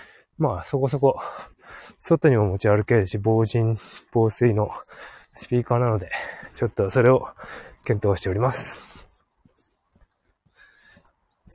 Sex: male